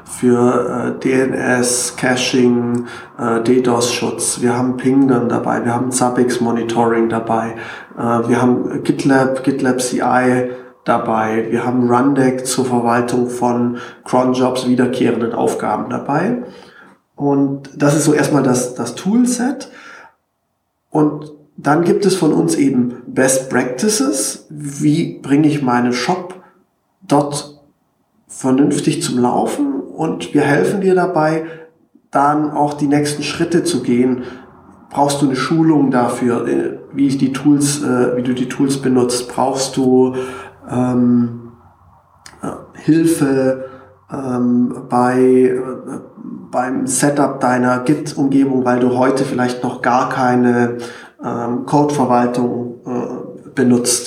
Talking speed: 120 wpm